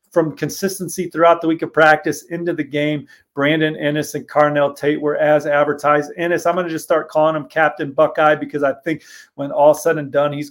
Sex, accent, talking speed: male, American, 210 wpm